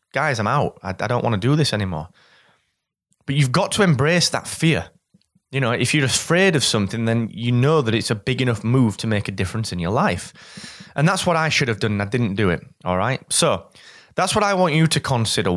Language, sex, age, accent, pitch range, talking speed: English, male, 20-39, British, 110-155 Hz, 240 wpm